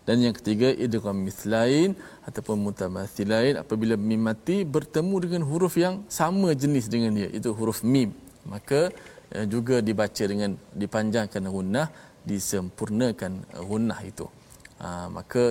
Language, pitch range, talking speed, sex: Malayalam, 95-115 Hz, 120 wpm, male